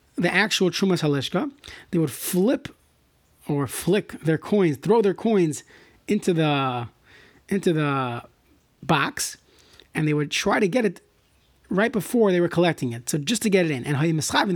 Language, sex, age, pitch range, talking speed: English, male, 30-49, 155-205 Hz, 165 wpm